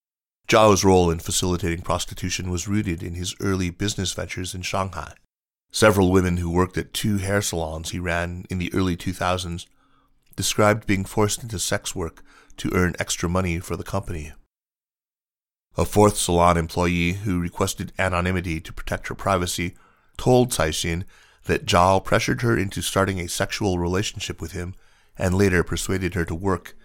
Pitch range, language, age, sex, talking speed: 85-100 Hz, English, 30-49, male, 160 wpm